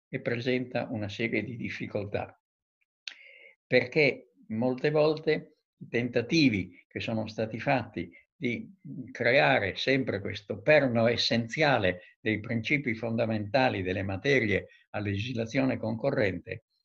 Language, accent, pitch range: Italian, native, 115-150 Hz